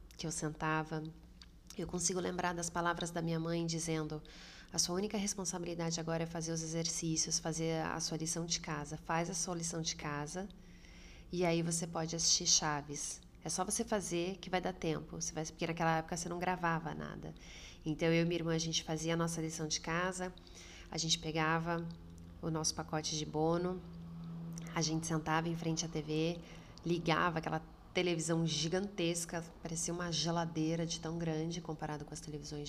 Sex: female